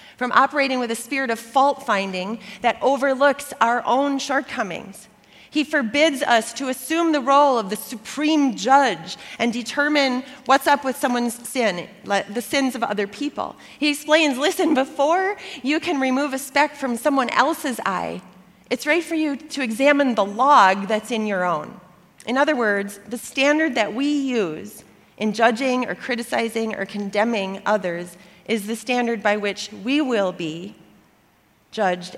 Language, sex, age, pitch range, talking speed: English, female, 30-49, 205-275 Hz, 155 wpm